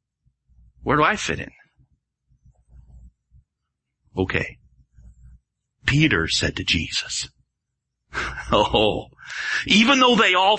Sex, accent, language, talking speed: male, American, English, 85 wpm